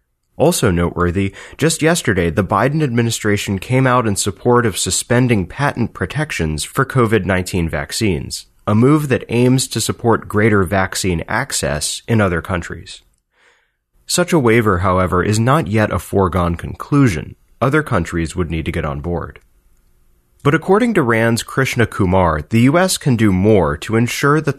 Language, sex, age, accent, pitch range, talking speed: English, male, 30-49, American, 90-125 Hz, 150 wpm